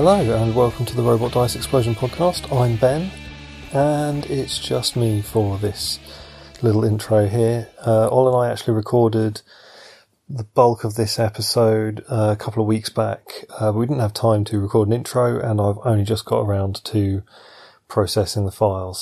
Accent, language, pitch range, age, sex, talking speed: British, English, 105-115 Hz, 30-49, male, 175 wpm